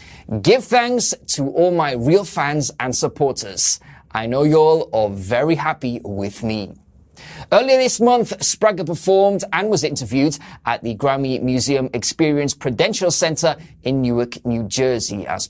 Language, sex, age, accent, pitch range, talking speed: English, male, 20-39, British, 115-175 Hz, 145 wpm